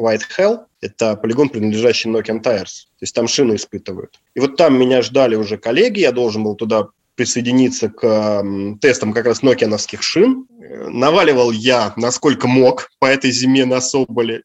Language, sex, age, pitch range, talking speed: Russian, male, 20-39, 115-140 Hz, 160 wpm